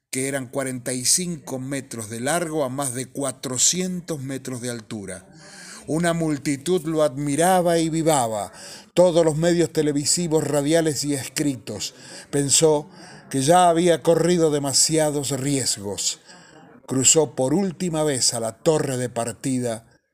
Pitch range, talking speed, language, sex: 125-165 Hz, 125 wpm, Spanish, male